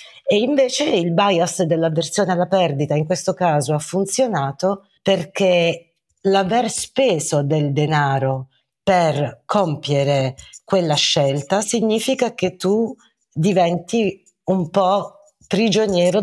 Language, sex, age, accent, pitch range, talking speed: Italian, female, 40-59, native, 145-195 Hz, 105 wpm